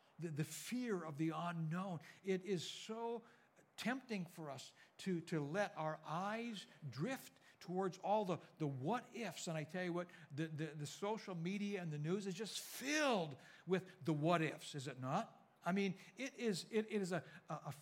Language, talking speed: English, 180 wpm